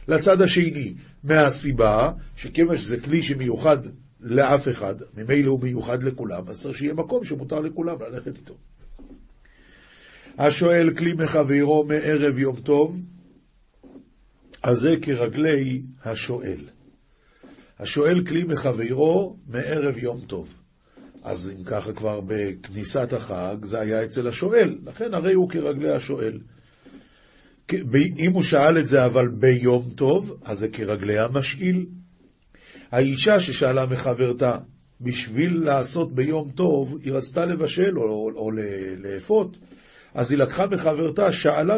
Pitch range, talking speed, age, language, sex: 125-180 Hz, 120 wpm, 50-69, Hebrew, male